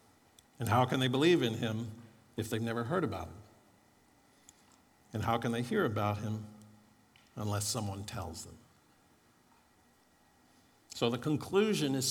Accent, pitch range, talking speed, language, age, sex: American, 110-140 Hz, 140 wpm, English, 50-69, male